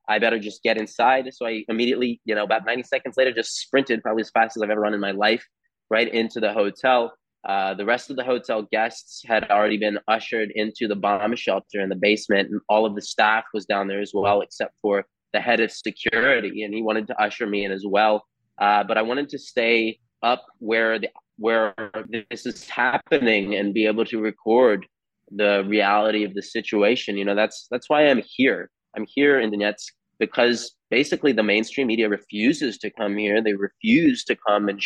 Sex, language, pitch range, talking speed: male, English, 105-115 Hz, 210 wpm